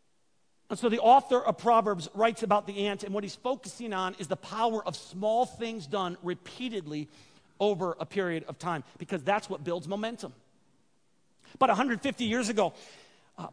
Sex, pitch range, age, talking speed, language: male, 200-240 Hz, 40-59, 170 wpm, English